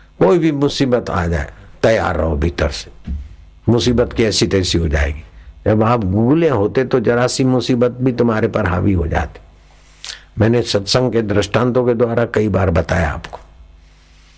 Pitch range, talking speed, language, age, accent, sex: 80-100 Hz, 160 wpm, Hindi, 60-79, native, male